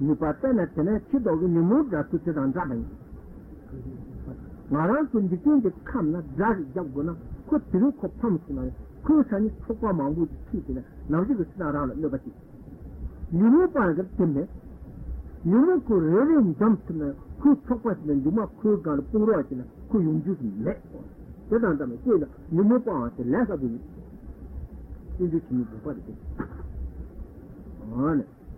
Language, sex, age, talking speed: Italian, male, 60-79, 45 wpm